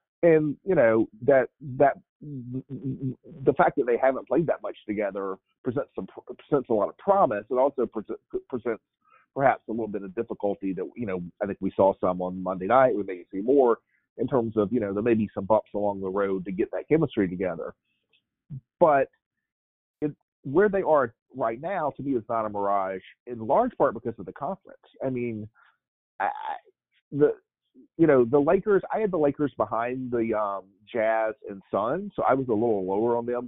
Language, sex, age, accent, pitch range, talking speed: English, male, 40-59, American, 105-150 Hz, 195 wpm